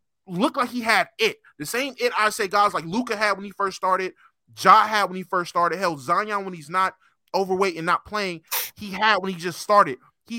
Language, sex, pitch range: English, male, 170-225 Hz